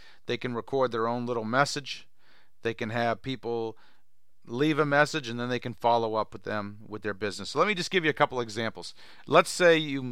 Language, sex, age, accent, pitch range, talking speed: English, male, 40-59, American, 110-130 Hz, 220 wpm